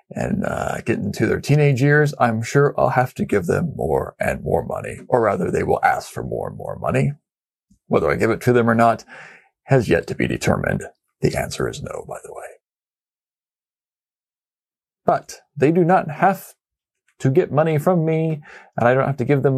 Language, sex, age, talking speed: English, male, 40-59, 200 wpm